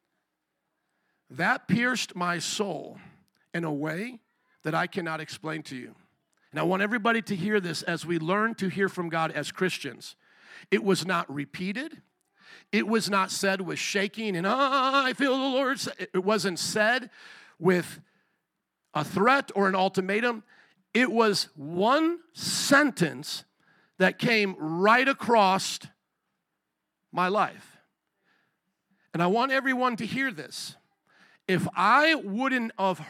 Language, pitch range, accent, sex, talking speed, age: English, 180-230 Hz, American, male, 135 wpm, 50-69